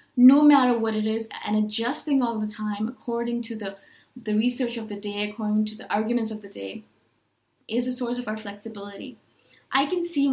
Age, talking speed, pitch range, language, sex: 20-39, 200 wpm, 215-250 Hz, English, female